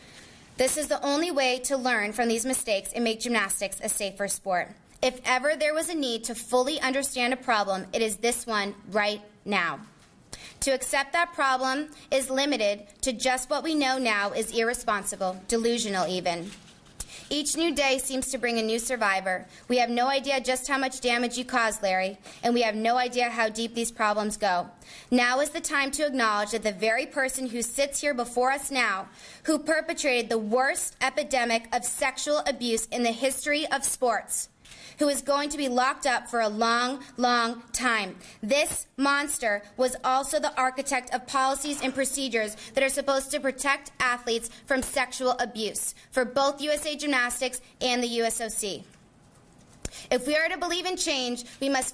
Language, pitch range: English, 225-275 Hz